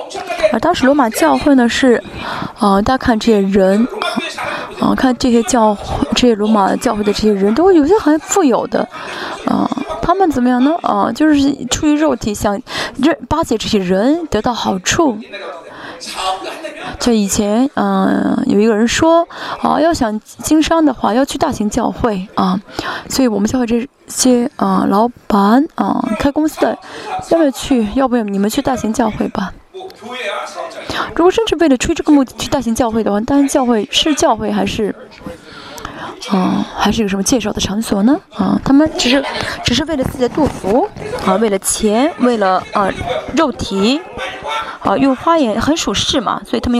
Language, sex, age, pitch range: Chinese, female, 20-39, 220-305 Hz